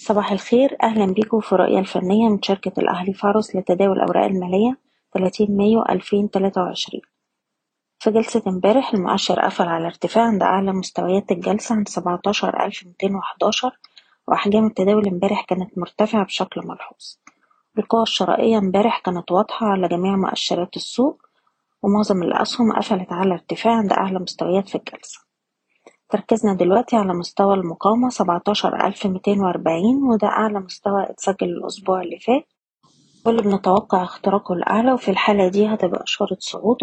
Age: 20-39